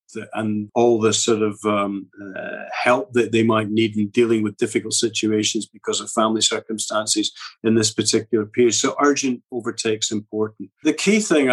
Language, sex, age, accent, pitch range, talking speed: English, male, 40-59, British, 110-135 Hz, 165 wpm